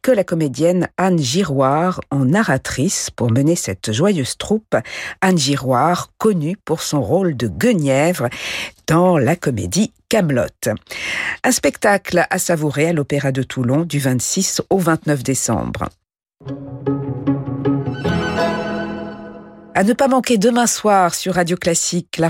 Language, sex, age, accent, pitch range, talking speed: French, female, 50-69, French, 140-185 Hz, 125 wpm